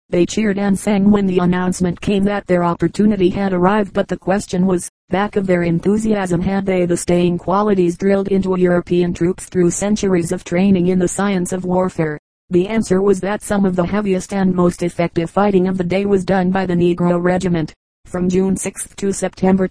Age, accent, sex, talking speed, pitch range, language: 40-59, American, female, 200 wpm, 175-195 Hz, English